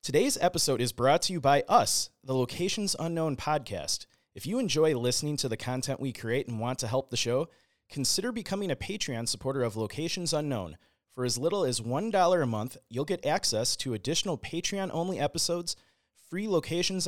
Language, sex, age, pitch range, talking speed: English, male, 30-49, 125-165 Hz, 180 wpm